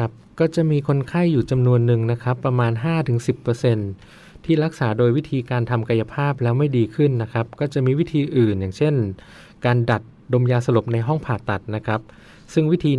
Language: Thai